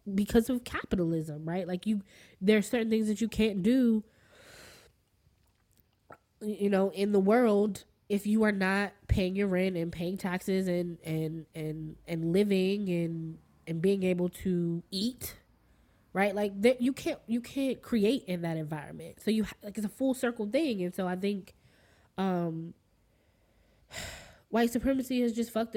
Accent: American